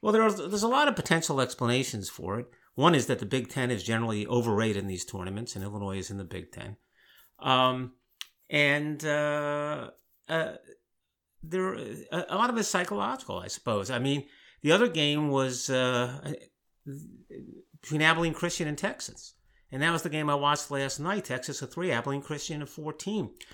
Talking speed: 180 wpm